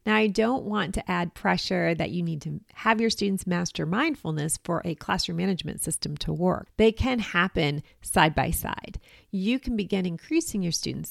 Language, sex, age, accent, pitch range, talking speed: English, female, 40-59, American, 165-210 Hz, 190 wpm